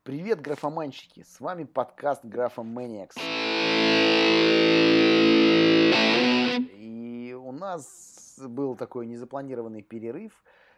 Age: 30-49